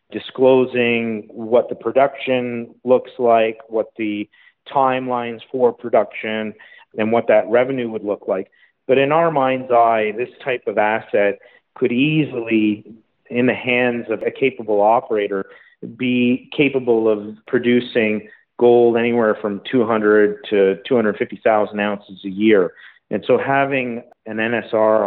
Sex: male